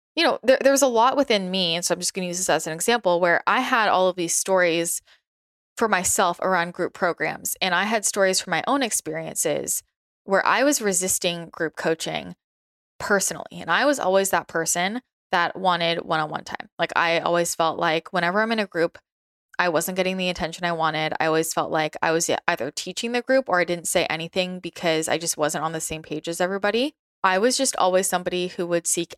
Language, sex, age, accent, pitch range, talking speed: English, female, 20-39, American, 170-200 Hz, 220 wpm